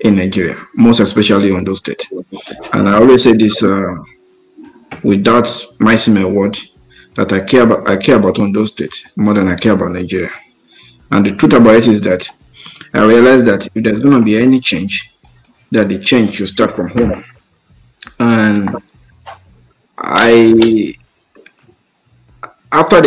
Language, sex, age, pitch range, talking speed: English, male, 50-69, 100-120 Hz, 155 wpm